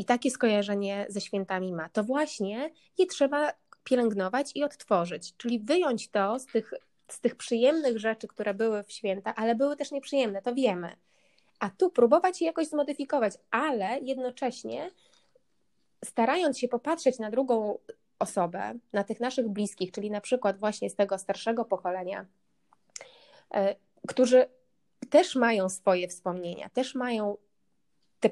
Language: Polish